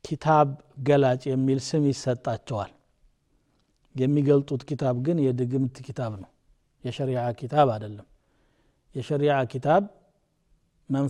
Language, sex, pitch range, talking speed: Amharic, male, 125-150 Hz, 105 wpm